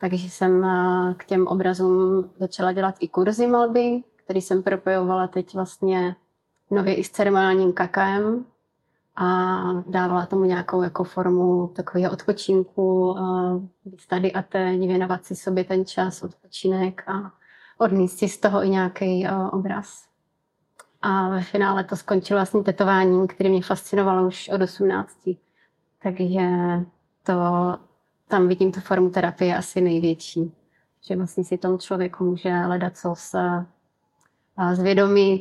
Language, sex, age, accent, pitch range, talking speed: Czech, female, 30-49, native, 180-190 Hz, 130 wpm